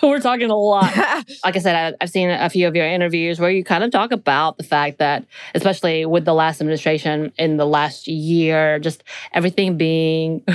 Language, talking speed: English, 200 wpm